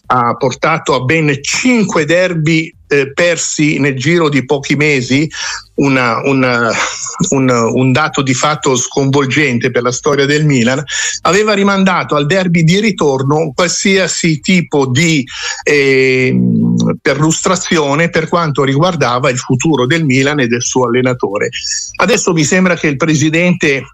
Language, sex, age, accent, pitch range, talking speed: Italian, male, 50-69, native, 130-165 Hz, 130 wpm